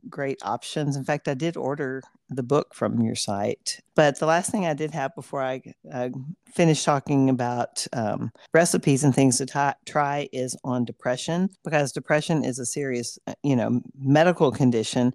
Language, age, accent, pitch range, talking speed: English, 50-69, American, 130-150 Hz, 175 wpm